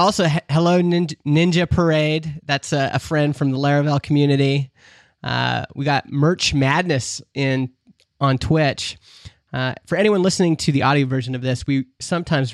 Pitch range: 130-175 Hz